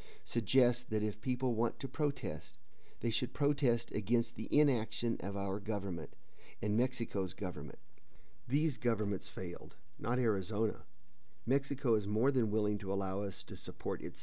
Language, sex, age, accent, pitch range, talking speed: English, male, 50-69, American, 105-125 Hz, 150 wpm